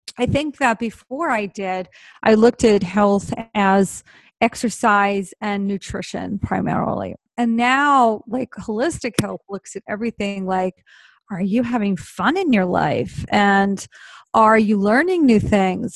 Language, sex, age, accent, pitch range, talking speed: English, female, 30-49, American, 200-260 Hz, 140 wpm